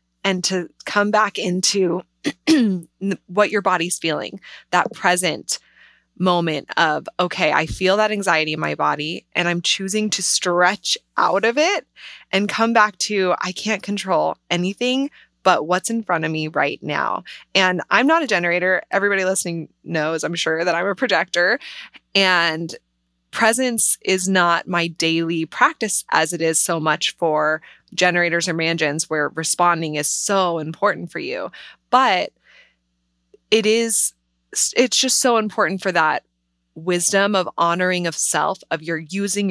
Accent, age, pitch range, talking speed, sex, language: American, 20-39, 160-200 Hz, 150 wpm, female, English